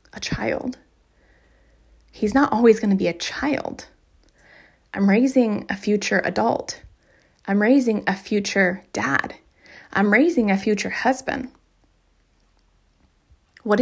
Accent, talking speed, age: American, 115 wpm, 20-39